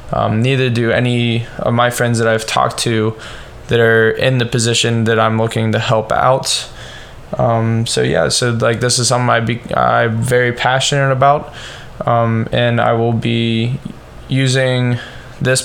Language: English